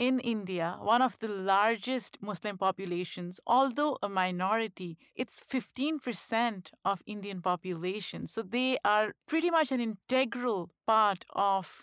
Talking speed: 125 wpm